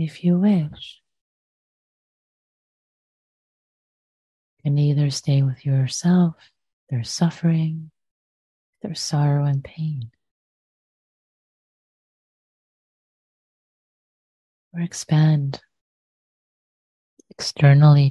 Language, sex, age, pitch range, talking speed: English, female, 30-49, 130-160 Hz, 60 wpm